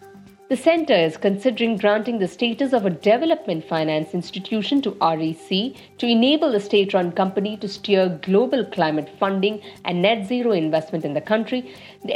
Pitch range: 170-215 Hz